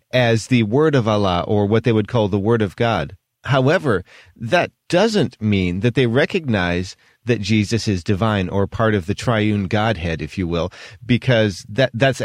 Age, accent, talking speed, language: 40-59, American, 180 wpm, English